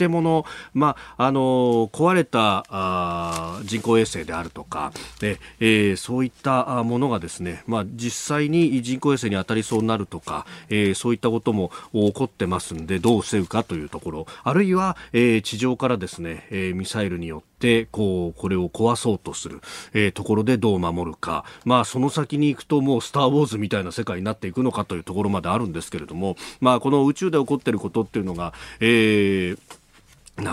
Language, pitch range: Japanese, 100-150 Hz